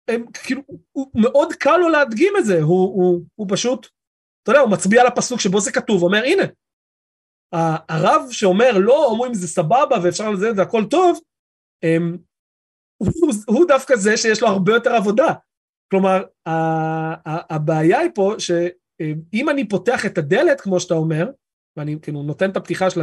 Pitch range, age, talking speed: 170-230 Hz, 30-49, 170 wpm